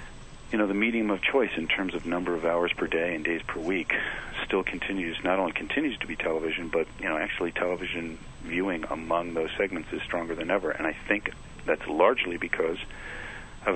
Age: 40-59